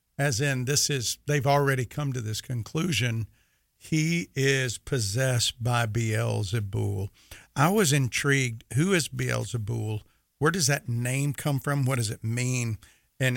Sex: male